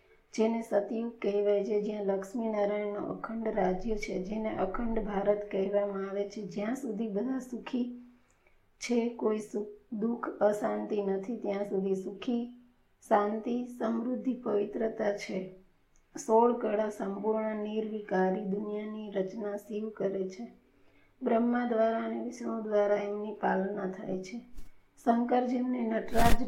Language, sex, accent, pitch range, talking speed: Gujarati, female, native, 205-235 Hz, 70 wpm